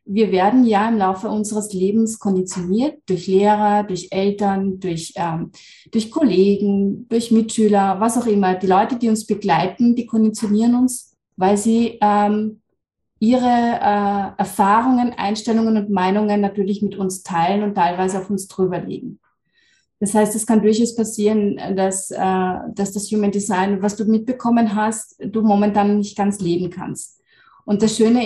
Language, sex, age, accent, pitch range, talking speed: German, female, 30-49, German, 190-220 Hz, 155 wpm